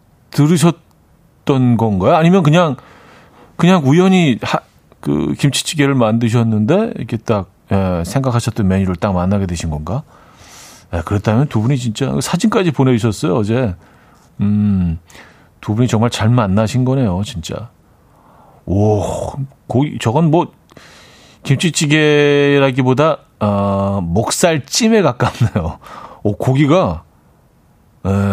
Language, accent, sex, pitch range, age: Korean, native, male, 100-145 Hz, 40-59